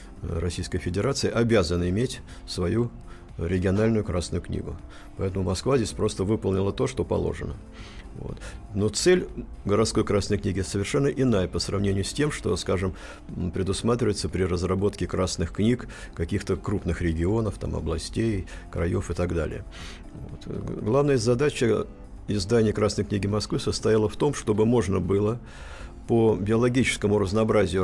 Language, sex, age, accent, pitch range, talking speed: Russian, male, 50-69, native, 90-105 Hz, 125 wpm